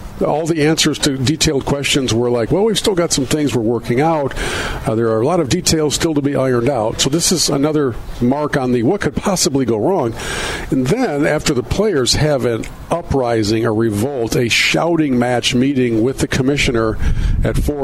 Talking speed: 200 wpm